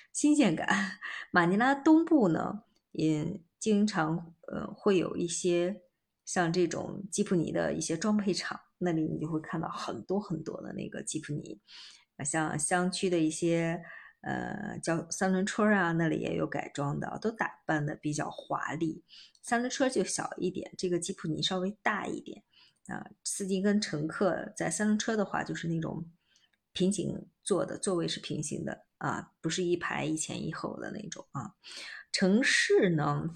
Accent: native